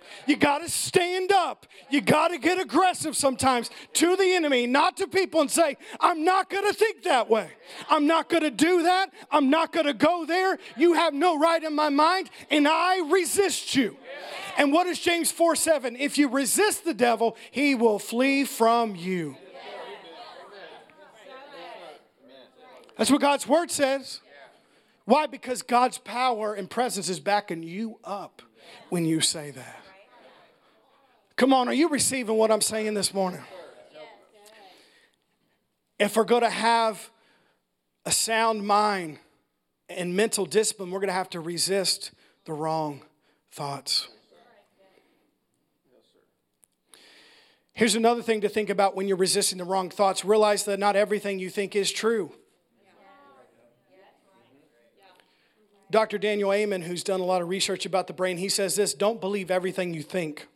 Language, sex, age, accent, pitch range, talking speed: English, male, 40-59, American, 195-310 Hz, 155 wpm